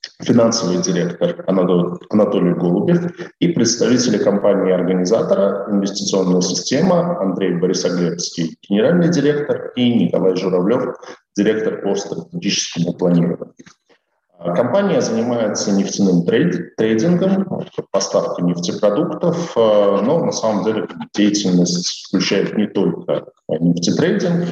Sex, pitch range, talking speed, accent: male, 90-125 Hz, 95 wpm, native